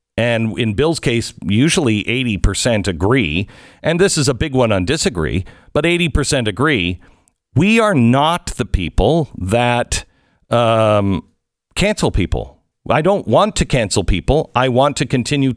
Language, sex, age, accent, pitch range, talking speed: English, male, 50-69, American, 95-135 Hz, 150 wpm